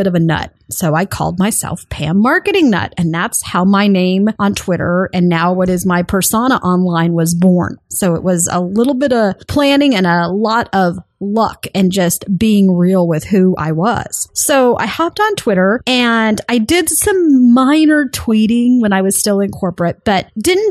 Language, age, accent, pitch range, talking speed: English, 30-49, American, 175-240 Hz, 195 wpm